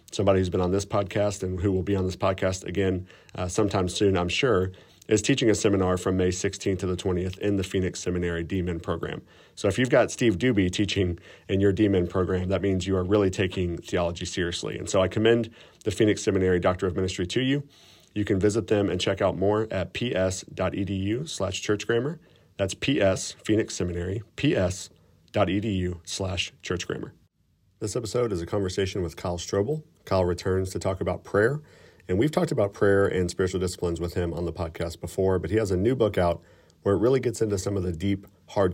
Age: 40-59